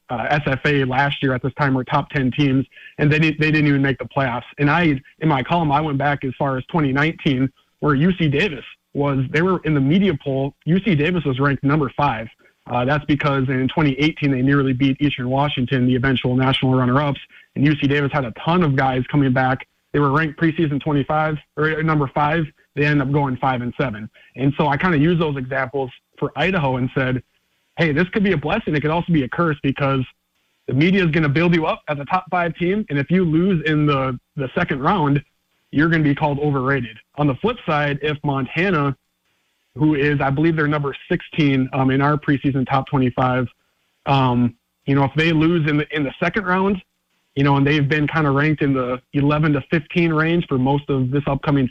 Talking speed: 220 wpm